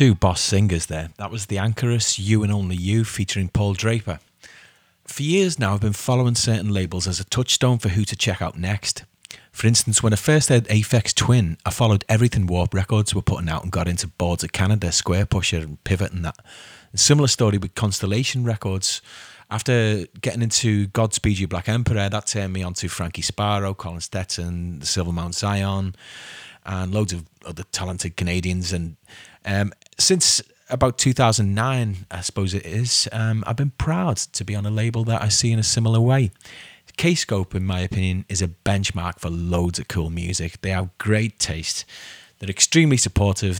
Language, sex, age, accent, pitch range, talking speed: English, male, 30-49, British, 90-115 Hz, 185 wpm